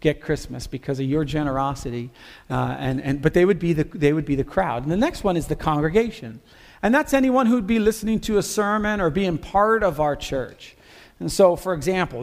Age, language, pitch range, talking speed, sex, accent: 40-59, English, 145-190 Hz, 220 wpm, male, American